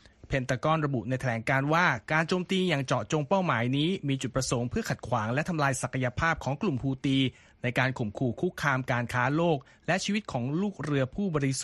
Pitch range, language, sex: 130-160 Hz, Thai, male